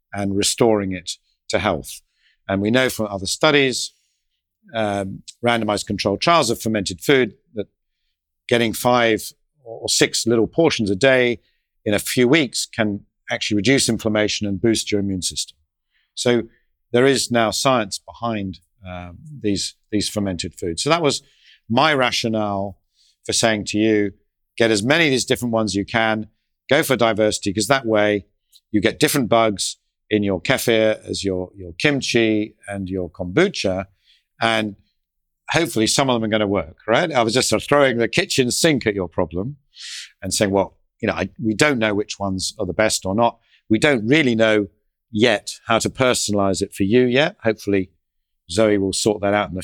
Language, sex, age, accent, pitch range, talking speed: English, male, 50-69, British, 95-120 Hz, 175 wpm